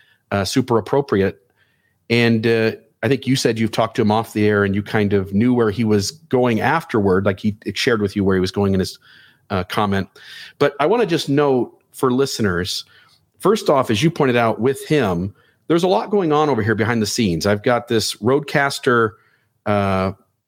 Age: 40-59